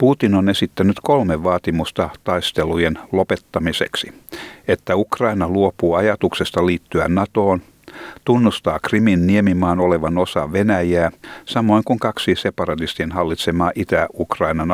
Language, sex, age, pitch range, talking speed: Finnish, male, 60-79, 85-105 Hz, 100 wpm